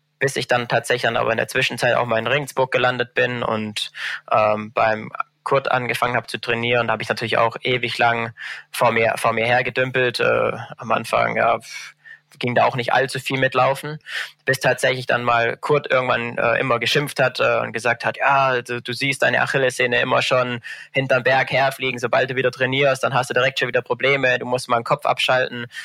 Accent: German